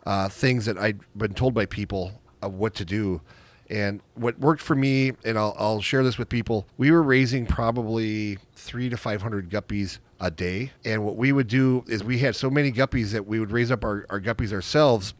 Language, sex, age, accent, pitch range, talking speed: English, male, 40-59, American, 105-130 Hz, 220 wpm